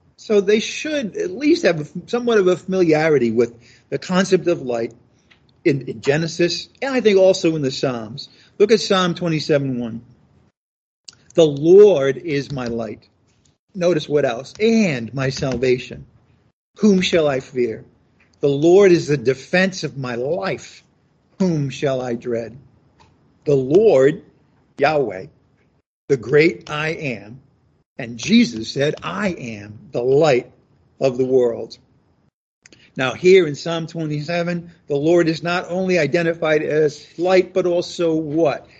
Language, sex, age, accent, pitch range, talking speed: English, male, 50-69, American, 135-195 Hz, 140 wpm